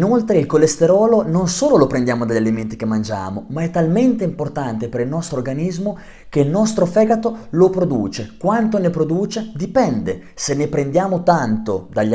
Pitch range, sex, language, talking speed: 125-185 Hz, male, Italian, 170 wpm